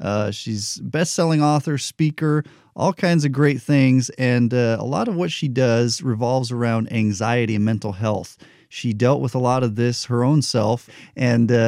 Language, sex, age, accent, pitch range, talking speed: English, male, 40-59, American, 115-145 Hz, 180 wpm